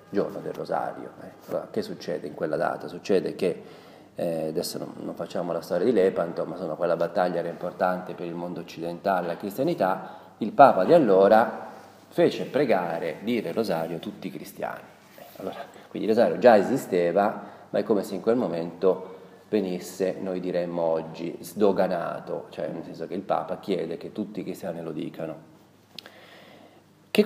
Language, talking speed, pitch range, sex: Italian, 170 wpm, 85-100 Hz, male